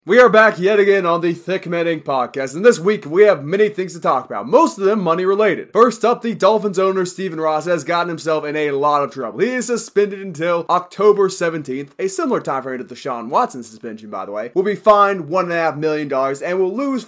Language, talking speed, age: English, 235 wpm, 20-39